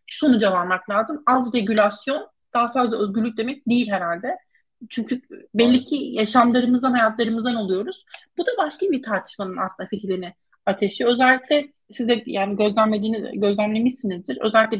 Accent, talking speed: native, 125 wpm